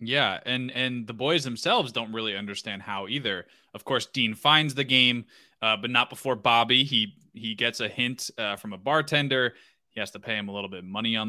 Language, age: English, 20-39